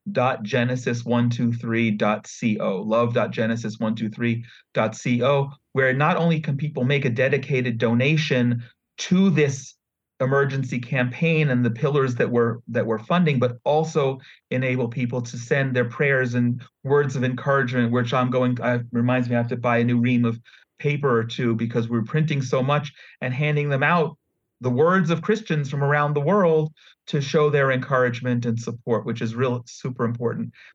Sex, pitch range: male, 120-145 Hz